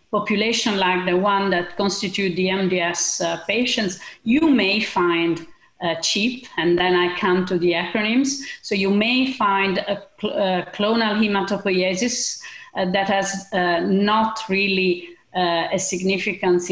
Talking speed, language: 145 wpm, English